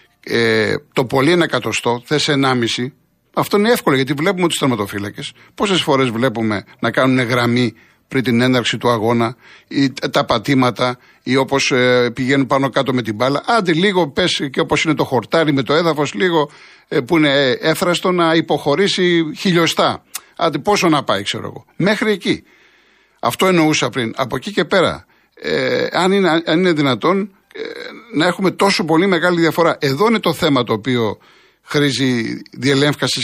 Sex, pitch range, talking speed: male, 125-170 Hz, 155 wpm